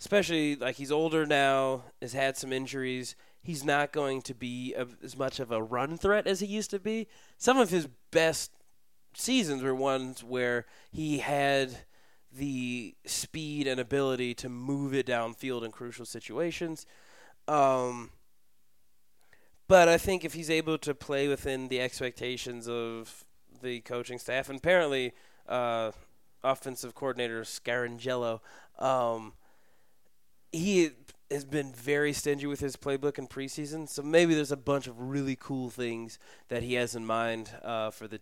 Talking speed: 150 wpm